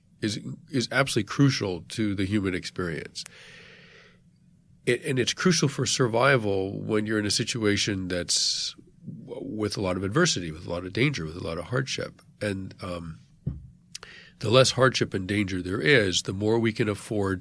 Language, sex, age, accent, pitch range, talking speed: English, male, 40-59, American, 100-130 Hz, 170 wpm